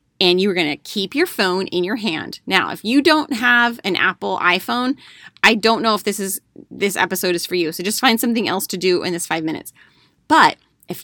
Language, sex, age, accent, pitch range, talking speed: English, female, 30-49, American, 170-215 Hz, 230 wpm